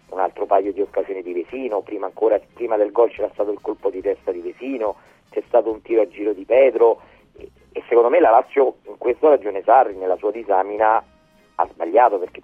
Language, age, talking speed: Italian, 40-59, 210 wpm